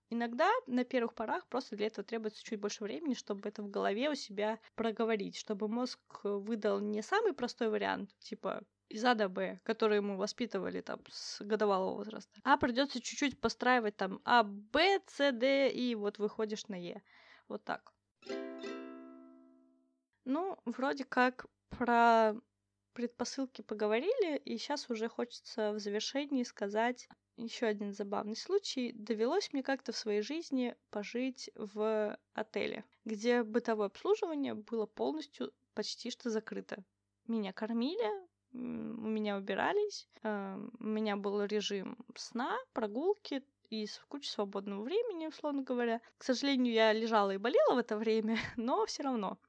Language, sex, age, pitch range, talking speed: Russian, female, 20-39, 210-255 Hz, 140 wpm